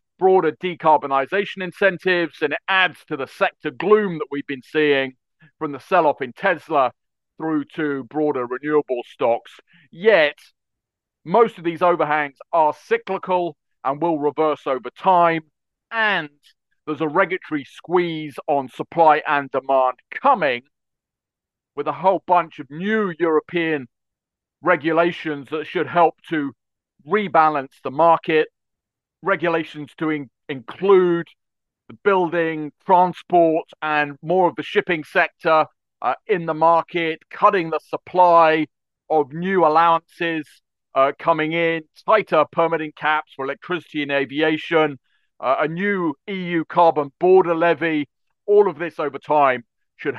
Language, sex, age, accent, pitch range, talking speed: English, male, 40-59, British, 145-180 Hz, 125 wpm